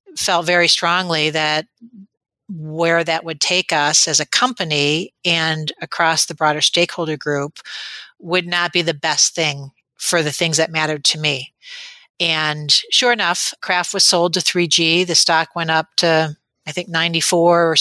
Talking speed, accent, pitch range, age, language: 160 wpm, American, 155-185 Hz, 40-59, English